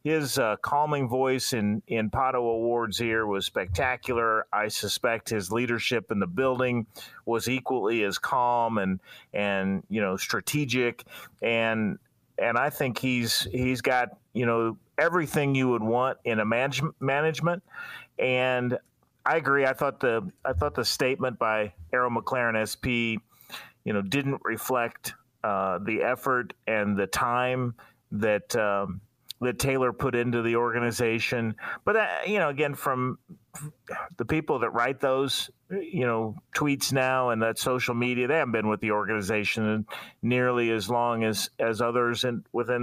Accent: American